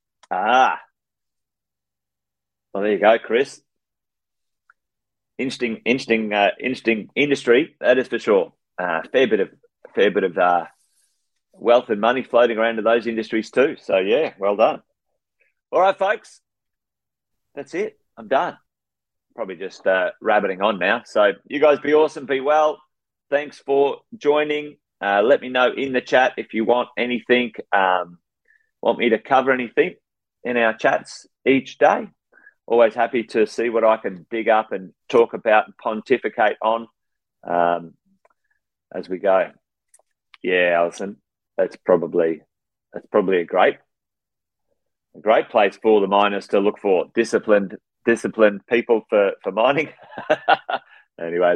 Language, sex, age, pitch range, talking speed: English, male, 30-49, 100-150 Hz, 145 wpm